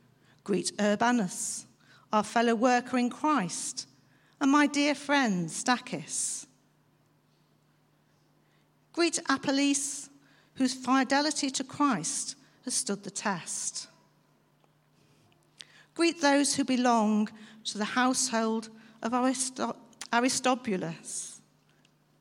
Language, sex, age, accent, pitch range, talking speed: English, female, 50-69, British, 200-270 Hz, 85 wpm